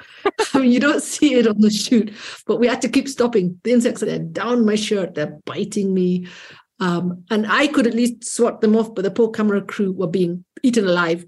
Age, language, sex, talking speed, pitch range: 50-69, English, female, 230 wpm, 185-230 Hz